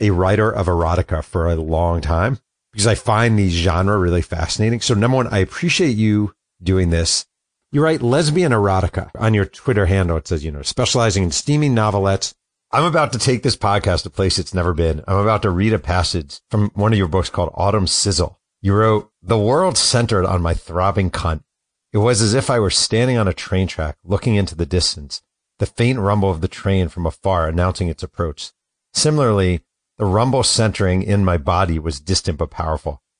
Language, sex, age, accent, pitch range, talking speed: English, male, 40-59, American, 85-105 Hz, 200 wpm